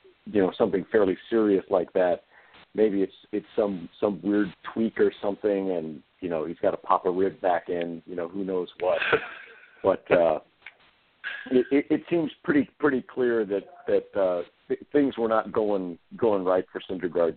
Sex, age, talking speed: male, 50-69, 180 wpm